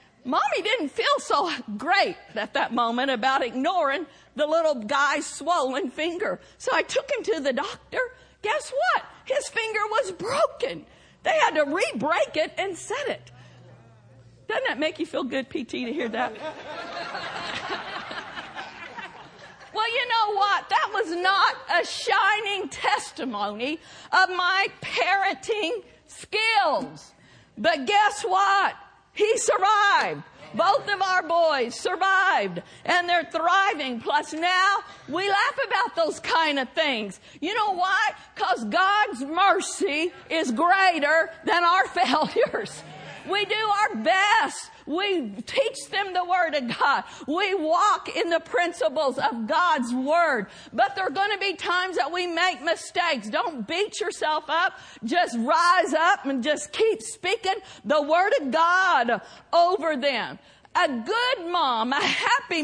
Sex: female